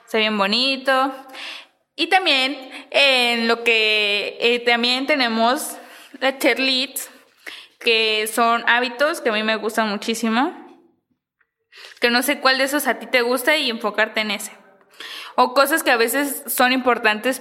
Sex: female